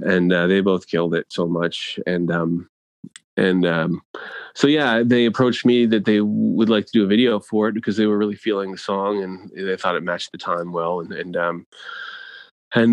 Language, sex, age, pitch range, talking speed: English, male, 30-49, 90-115 Hz, 215 wpm